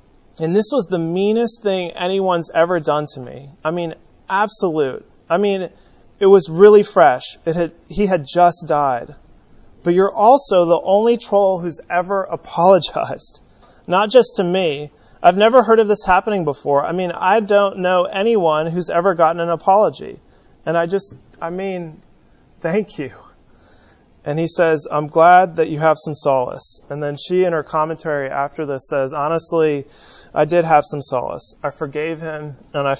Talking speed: 170 wpm